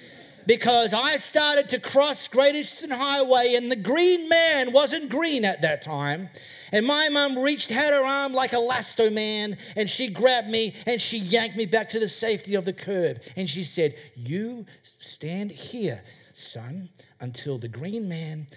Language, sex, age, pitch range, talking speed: English, male, 40-59, 145-235 Hz, 175 wpm